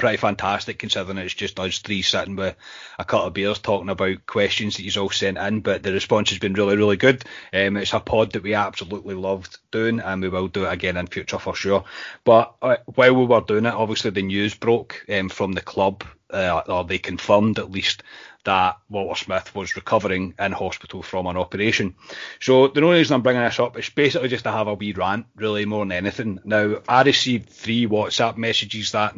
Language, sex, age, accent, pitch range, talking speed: English, male, 30-49, British, 95-115 Hz, 220 wpm